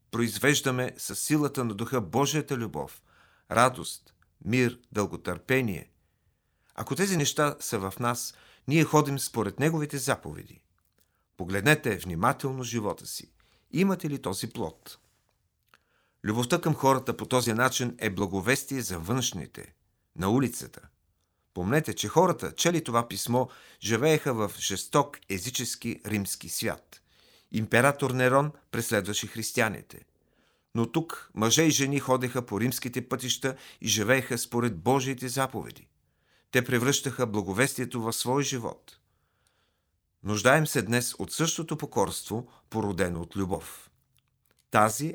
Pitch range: 105-135 Hz